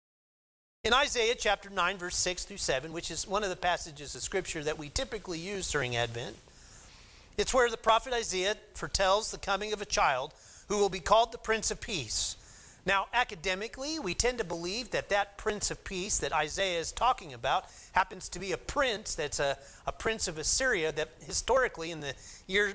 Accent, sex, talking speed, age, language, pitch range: American, male, 195 wpm, 30-49, English, 170-220 Hz